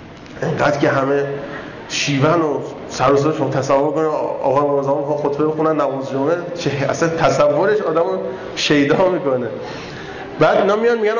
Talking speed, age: 135 wpm, 30-49